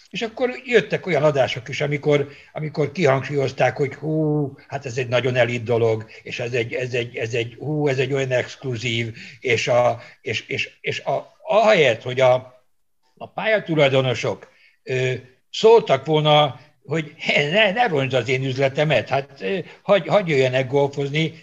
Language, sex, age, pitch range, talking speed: Hungarian, male, 60-79, 120-145 Hz, 145 wpm